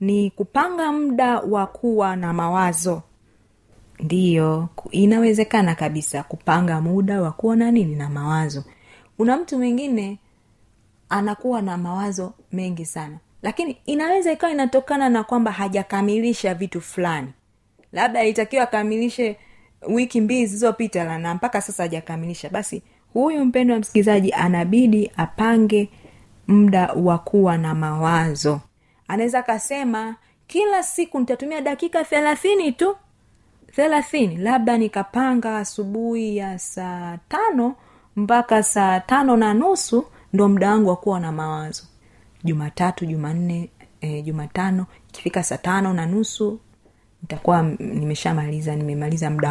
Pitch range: 160-235 Hz